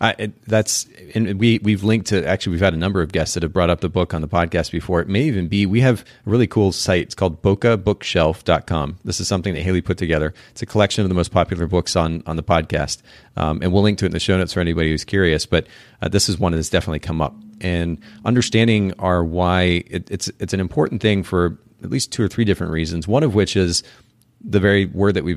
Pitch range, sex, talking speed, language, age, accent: 85-105 Hz, male, 250 wpm, English, 40-59, American